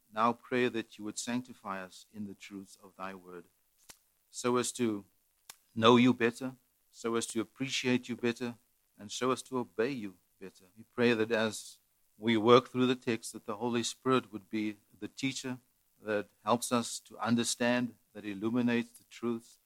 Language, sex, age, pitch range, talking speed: English, male, 50-69, 105-120 Hz, 175 wpm